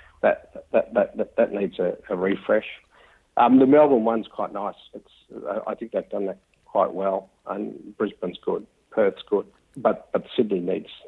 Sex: male